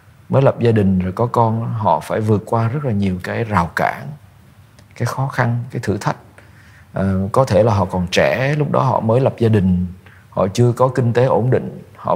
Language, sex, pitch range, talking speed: Vietnamese, male, 105-125 Hz, 215 wpm